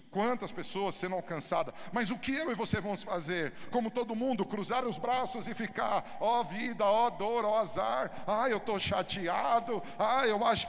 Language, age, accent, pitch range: Portuguese, 50-69, Brazilian, 195-235 Hz